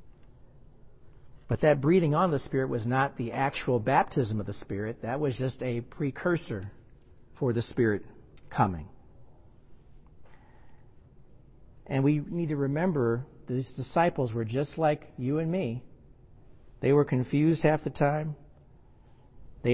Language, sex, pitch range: English, male, 120-150 Hz